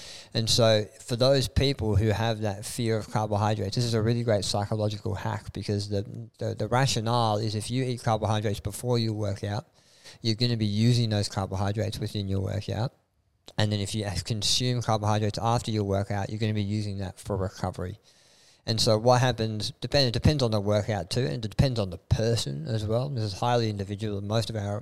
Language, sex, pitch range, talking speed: English, male, 105-120 Hz, 205 wpm